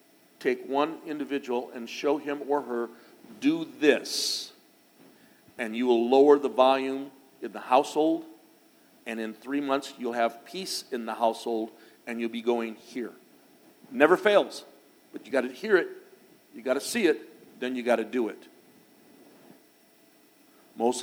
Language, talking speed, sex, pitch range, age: English, 155 wpm, male, 120-155 Hz, 50-69